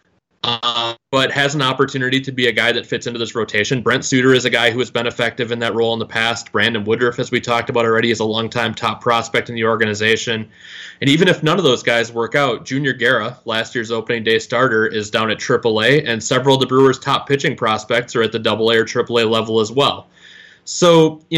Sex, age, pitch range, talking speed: male, 20-39, 110-135 Hz, 235 wpm